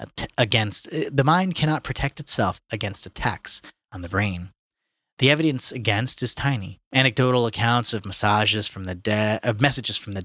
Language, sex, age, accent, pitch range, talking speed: English, male, 30-49, American, 105-130 Hz, 160 wpm